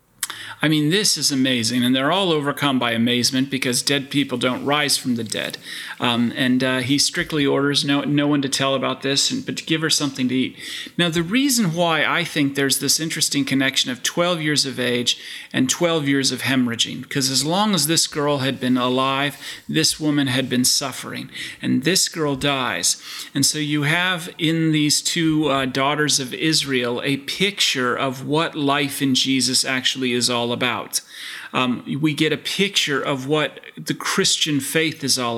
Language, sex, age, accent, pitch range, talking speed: English, male, 30-49, American, 130-160 Hz, 190 wpm